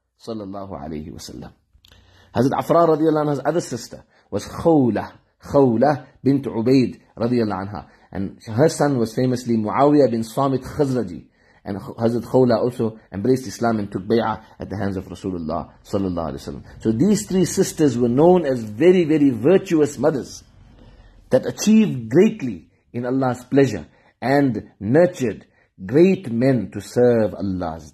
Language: English